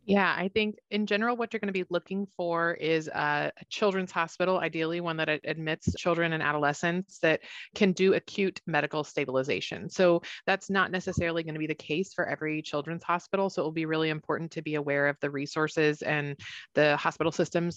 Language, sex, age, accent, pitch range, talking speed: English, female, 30-49, American, 150-180 Hz, 195 wpm